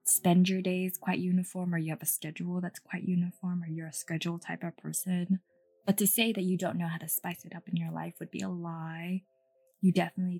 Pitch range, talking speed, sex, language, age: 150-200 Hz, 235 wpm, female, English, 20-39